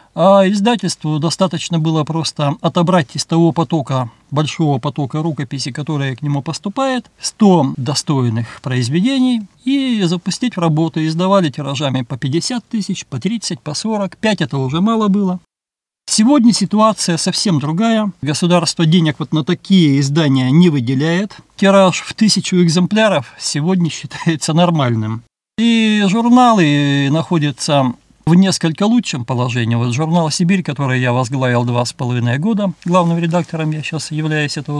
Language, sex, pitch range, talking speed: Russian, male, 145-190 Hz, 135 wpm